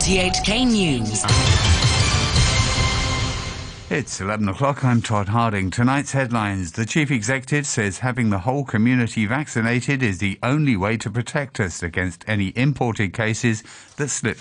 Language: English